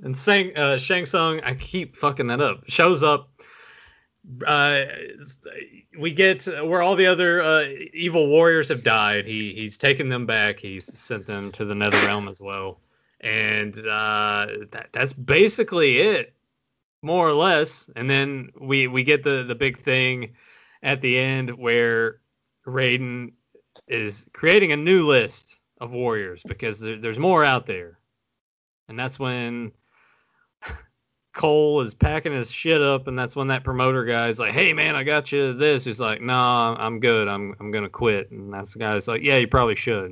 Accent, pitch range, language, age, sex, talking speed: American, 115-150 Hz, English, 30-49, male, 175 wpm